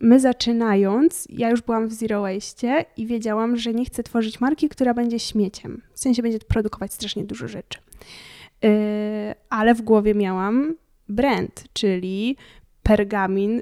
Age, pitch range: 10-29, 205-240 Hz